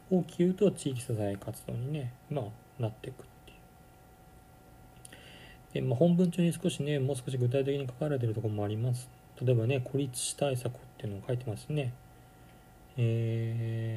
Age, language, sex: 40-59, Japanese, male